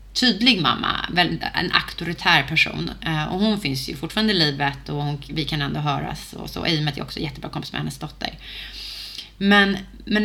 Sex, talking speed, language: female, 200 wpm, Swedish